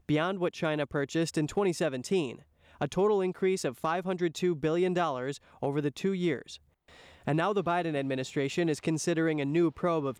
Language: English